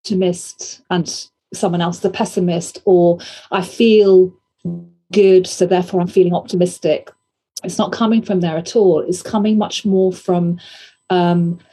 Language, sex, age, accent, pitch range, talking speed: English, female, 40-59, British, 180-215 Hz, 145 wpm